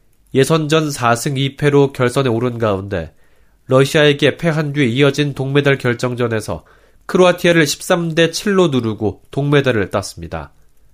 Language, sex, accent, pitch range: Korean, male, native, 120-150 Hz